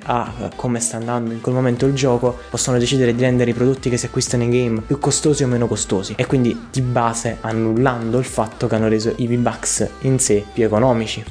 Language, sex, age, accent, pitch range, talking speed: Italian, male, 20-39, native, 110-130 Hz, 220 wpm